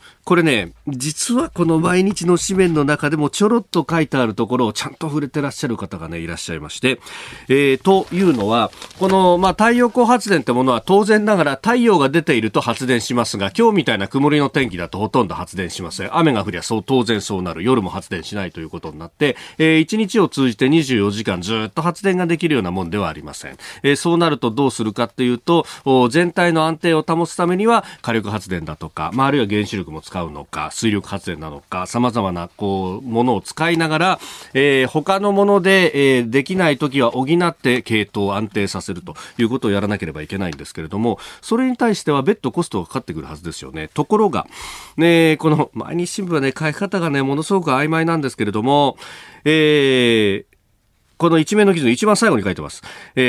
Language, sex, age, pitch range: Japanese, male, 40-59, 105-170 Hz